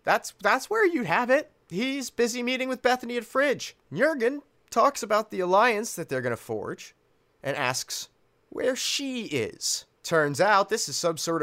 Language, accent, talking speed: English, American, 175 wpm